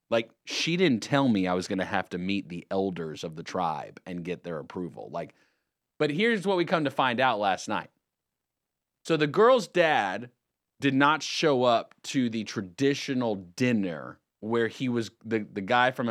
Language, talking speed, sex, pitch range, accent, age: English, 185 wpm, male, 110-185 Hz, American, 30-49